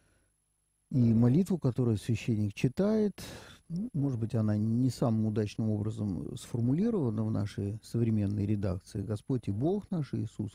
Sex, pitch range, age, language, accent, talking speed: male, 105-130 Hz, 50-69, Russian, native, 130 wpm